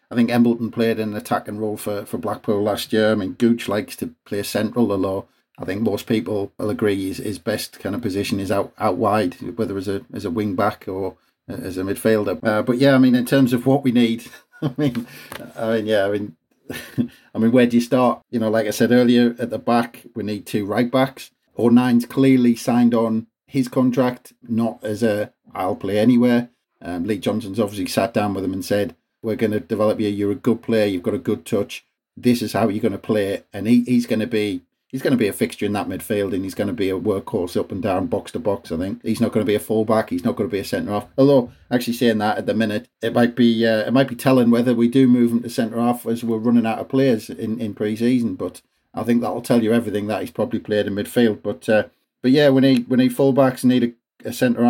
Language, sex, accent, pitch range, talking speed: English, male, British, 105-120 Hz, 255 wpm